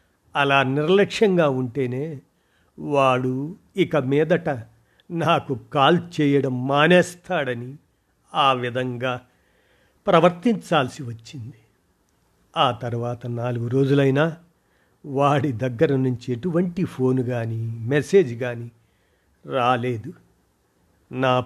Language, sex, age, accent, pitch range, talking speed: Telugu, male, 50-69, native, 125-155 Hz, 80 wpm